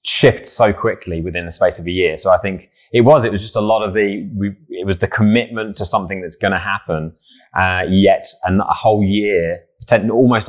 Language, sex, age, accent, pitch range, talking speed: English, male, 20-39, British, 90-110 Hz, 210 wpm